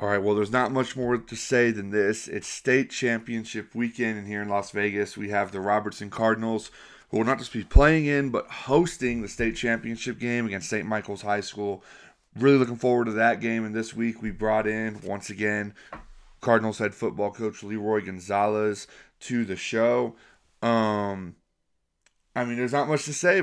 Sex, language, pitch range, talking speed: male, English, 105-120 Hz, 190 wpm